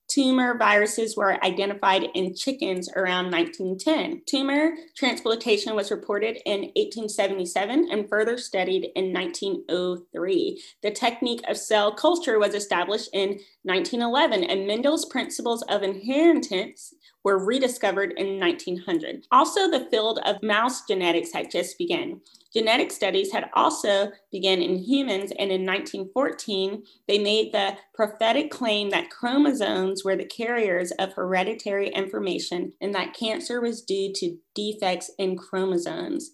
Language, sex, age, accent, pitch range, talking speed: English, female, 30-49, American, 195-250 Hz, 130 wpm